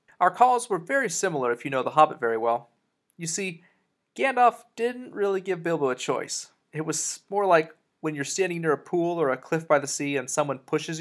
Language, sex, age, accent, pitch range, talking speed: English, male, 30-49, American, 140-170 Hz, 220 wpm